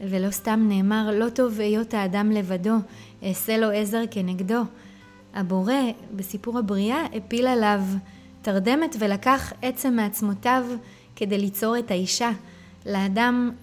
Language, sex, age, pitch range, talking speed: Hebrew, female, 20-39, 195-230 Hz, 115 wpm